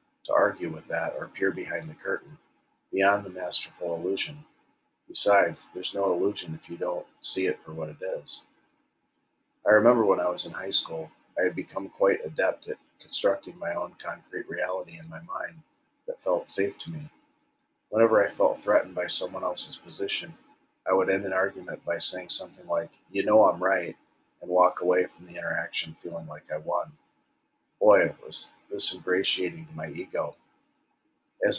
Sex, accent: male, American